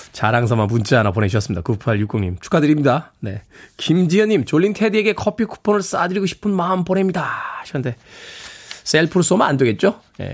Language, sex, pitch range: Korean, male, 130-190 Hz